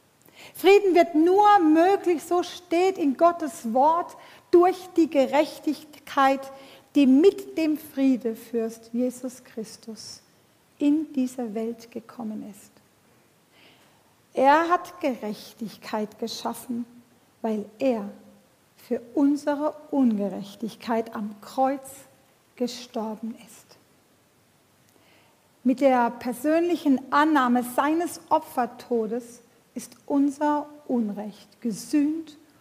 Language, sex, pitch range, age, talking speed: German, female, 230-295 Hz, 50-69, 85 wpm